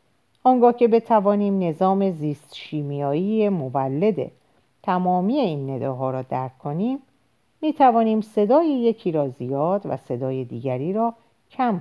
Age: 50-69